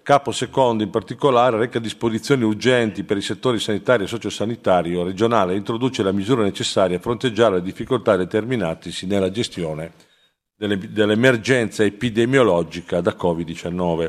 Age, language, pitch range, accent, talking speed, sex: 40-59, Italian, 100-125 Hz, native, 130 wpm, male